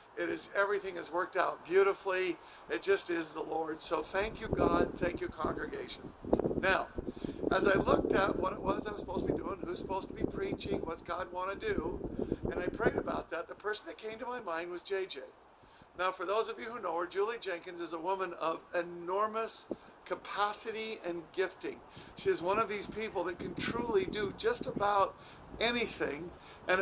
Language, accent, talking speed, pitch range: English, American, 195 wpm, 185-220 Hz